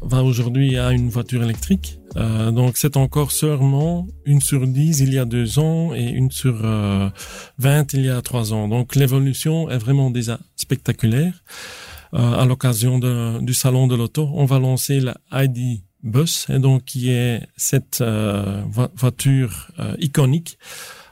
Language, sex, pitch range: French, male, 125-145 Hz